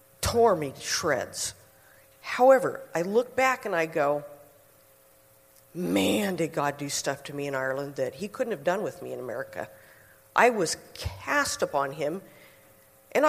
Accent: American